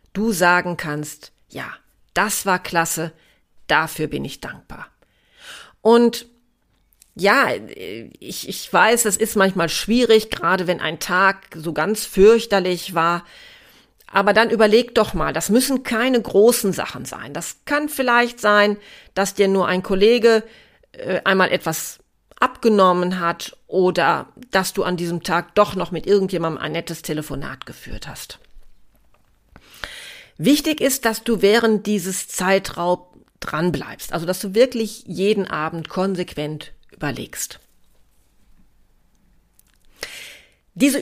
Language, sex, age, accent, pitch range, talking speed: German, female, 40-59, German, 175-230 Hz, 125 wpm